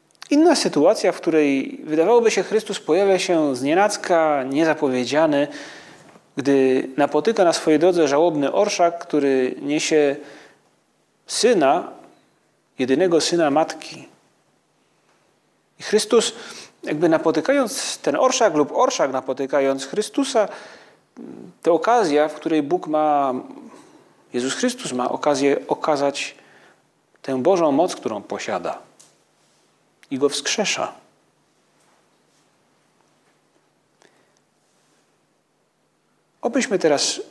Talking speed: 90 wpm